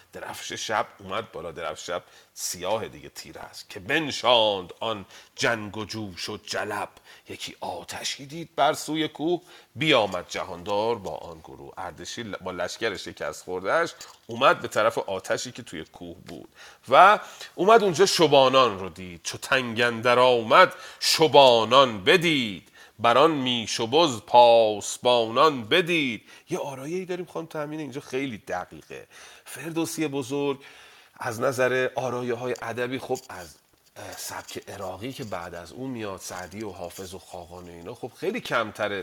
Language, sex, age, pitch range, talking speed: Persian, male, 30-49, 95-140 Hz, 145 wpm